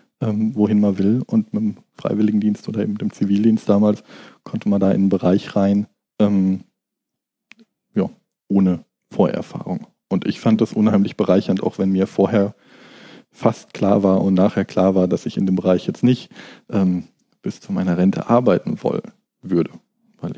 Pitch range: 95-115 Hz